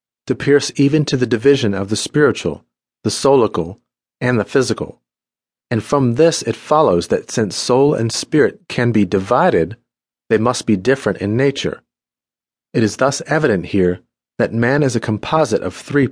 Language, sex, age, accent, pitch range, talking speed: English, male, 30-49, American, 100-135 Hz, 170 wpm